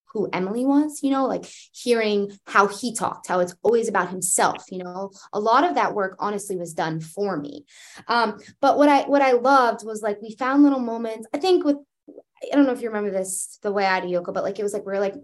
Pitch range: 180-235 Hz